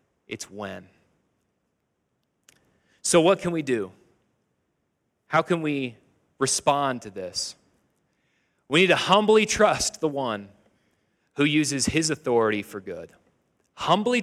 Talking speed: 115 wpm